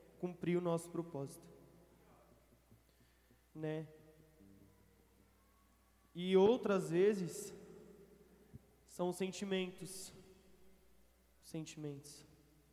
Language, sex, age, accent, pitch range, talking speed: Portuguese, male, 20-39, Brazilian, 150-185 Hz, 50 wpm